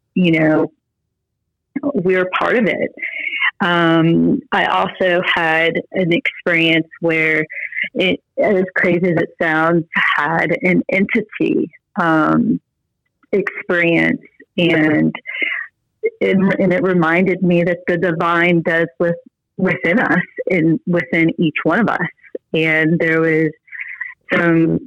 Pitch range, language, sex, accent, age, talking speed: 165-185 Hz, English, female, American, 30-49, 115 wpm